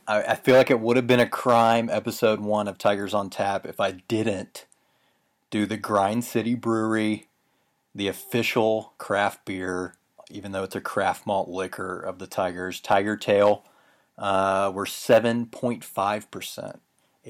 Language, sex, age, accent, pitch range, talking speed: English, male, 30-49, American, 95-115 Hz, 145 wpm